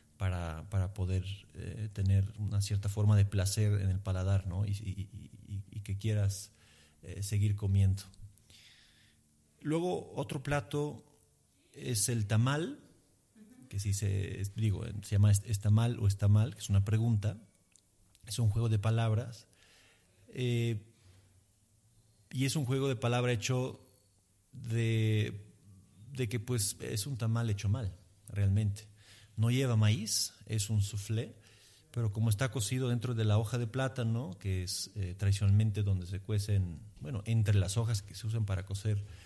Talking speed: 150 wpm